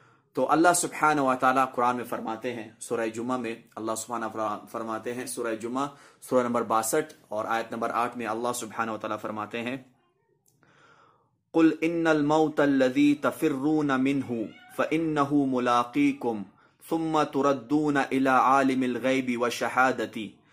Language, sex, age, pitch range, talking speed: Urdu, male, 30-49, 120-155 Hz, 95 wpm